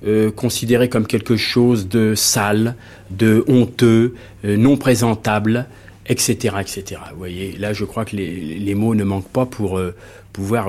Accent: French